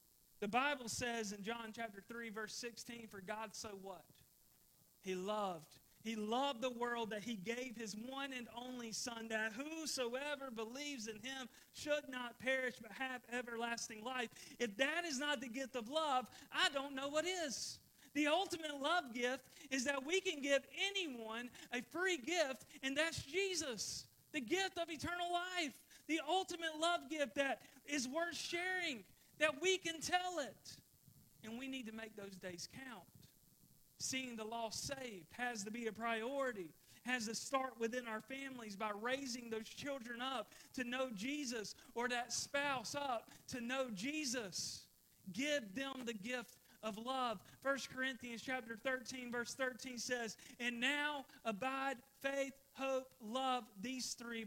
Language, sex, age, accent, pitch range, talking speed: English, male, 40-59, American, 225-280 Hz, 160 wpm